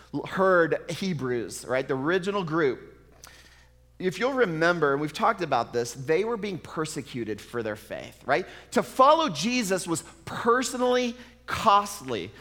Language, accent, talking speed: English, American, 135 wpm